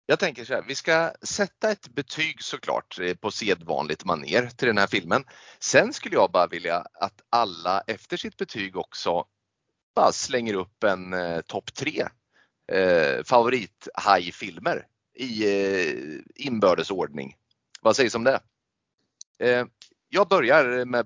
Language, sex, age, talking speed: Swedish, male, 30-49, 140 wpm